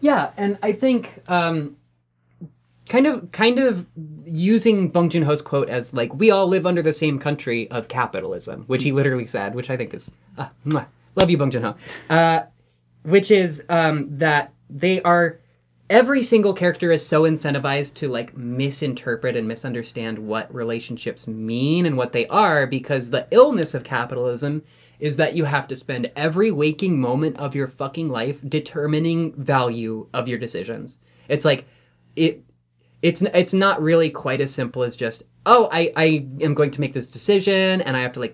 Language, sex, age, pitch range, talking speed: English, male, 20-39, 120-170 Hz, 175 wpm